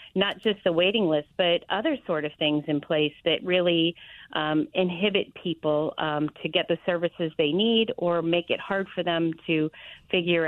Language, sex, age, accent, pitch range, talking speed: English, female, 40-59, American, 155-180 Hz, 185 wpm